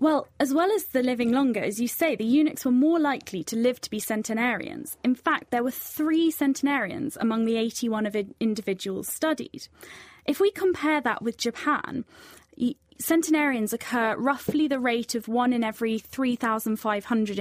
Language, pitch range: English, 215-290 Hz